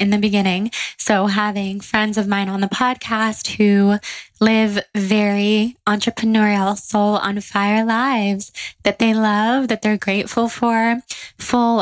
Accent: American